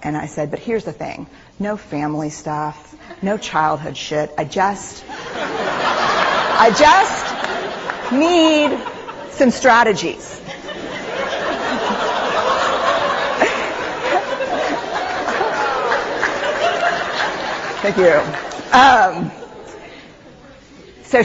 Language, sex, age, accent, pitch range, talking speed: English, female, 40-59, American, 165-210 Hz, 70 wpm